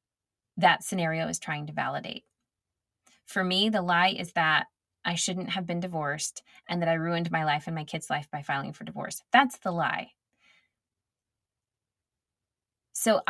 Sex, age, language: female, 20-39, English